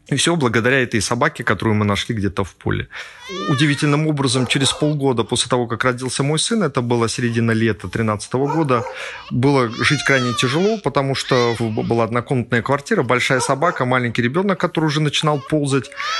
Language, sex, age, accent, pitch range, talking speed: Russian, male, 30-49, native, 110-140 Hz, 165 wpm